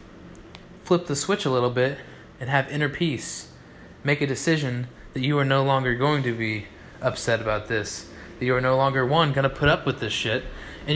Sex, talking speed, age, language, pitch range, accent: male, 210 wpm, 20-39, English, 115-145 Hz, American